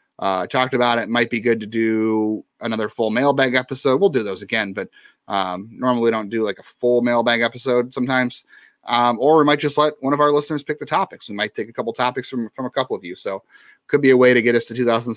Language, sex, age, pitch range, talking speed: English, male, 30-49, 110-145 Hz, 255 wpm